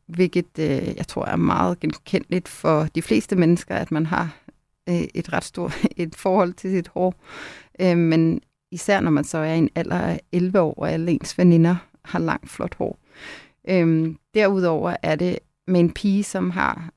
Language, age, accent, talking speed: Danish, 30-49, native, 165 wpm